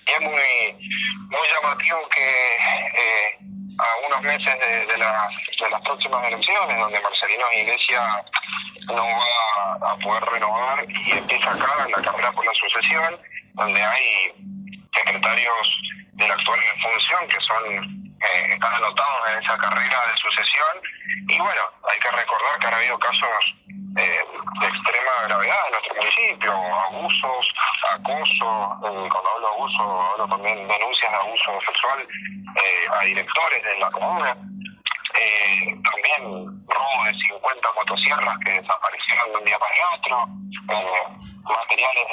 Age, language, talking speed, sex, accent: 30-49, Spanish, 140 wpm, male, Argentinian